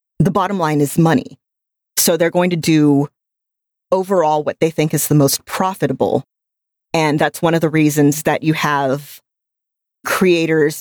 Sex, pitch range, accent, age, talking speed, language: female, 150-195 Hz, American, 30-49, 155 wpm, English